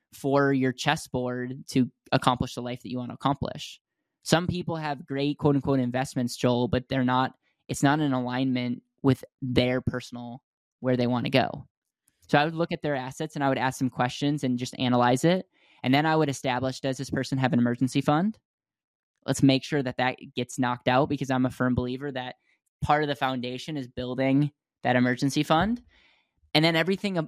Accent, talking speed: American, 195 wpm